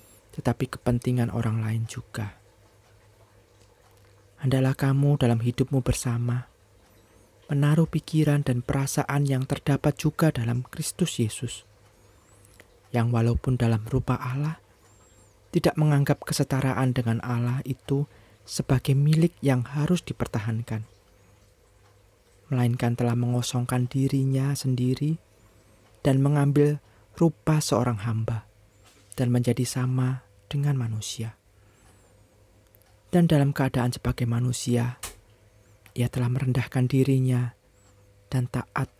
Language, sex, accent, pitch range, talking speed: Indonesian, male, native, 105-130 Hz, 95 wpm